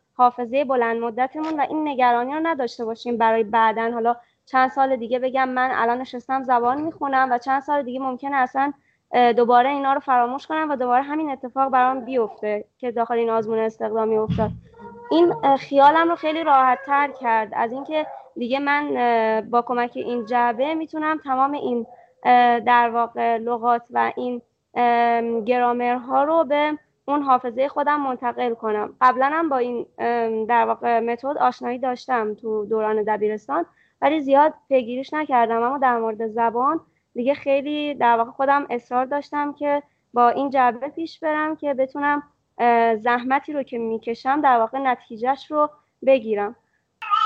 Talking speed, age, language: 150 wpm, 20-39, Persian